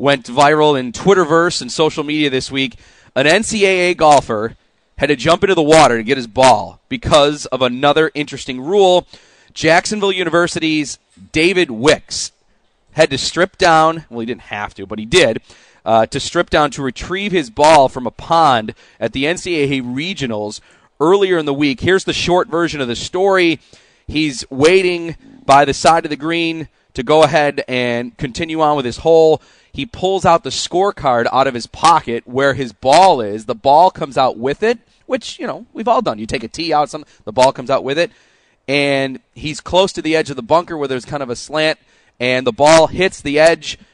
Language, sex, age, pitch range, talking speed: English, male, 40-59, 130-170 Hz, 195 wpm